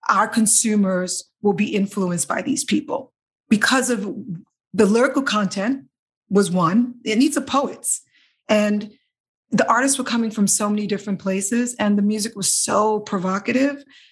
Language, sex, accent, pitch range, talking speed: English, female, American, 195-245 Hz, 150 wpm